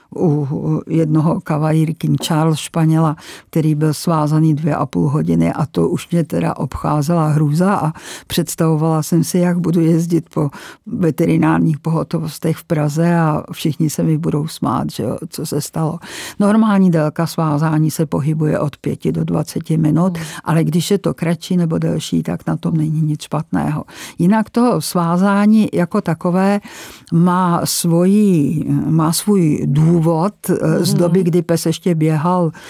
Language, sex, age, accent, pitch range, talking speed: Czech, female, 50-69, native, 155-180 Hz, 150 wpm